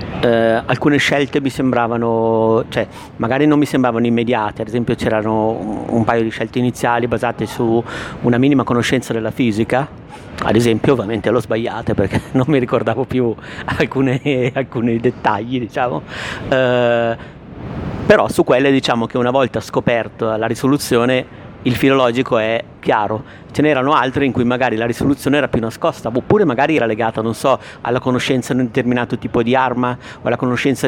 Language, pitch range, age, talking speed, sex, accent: Italian, 115-130 Hz, 50-69, 165 wpm, male, native